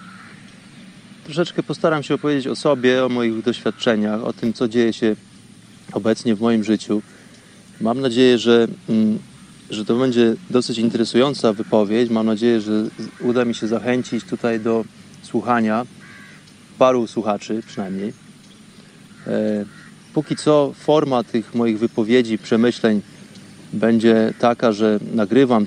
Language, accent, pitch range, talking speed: Polish, native, 115-140 Hz, 120 wpm